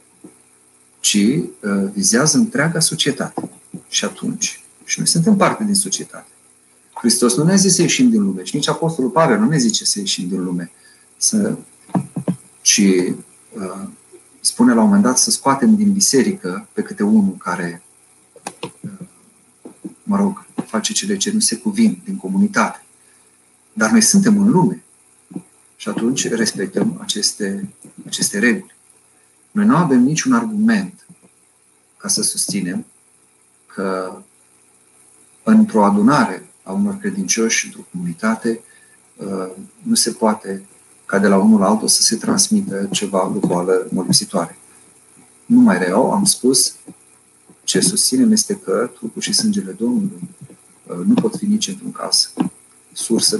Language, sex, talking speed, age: Romanian, male, 135 wpm, 40-59